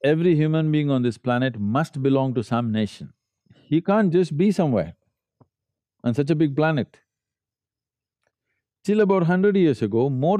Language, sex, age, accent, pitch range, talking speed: English, male, 50-69, Indian, 110-155 Hz, 155 wpm